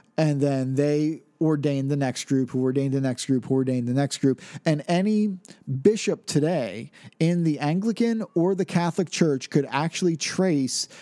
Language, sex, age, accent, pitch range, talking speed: English, male, 40-59, American, 135-175 Hz, 165 wpm